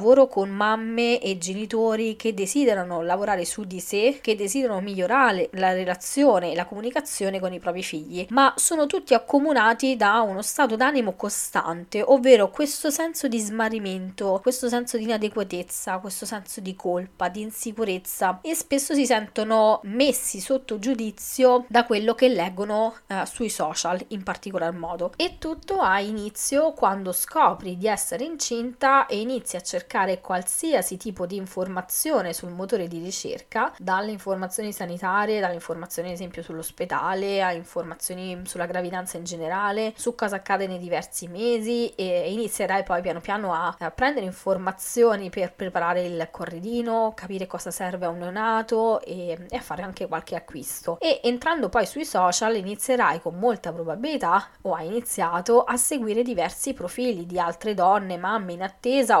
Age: 20-39